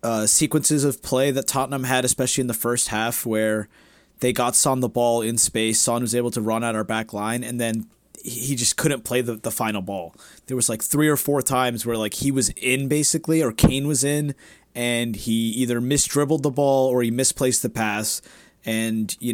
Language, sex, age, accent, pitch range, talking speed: English, male, 30-49, American, 110-135 Hz, 215 wpm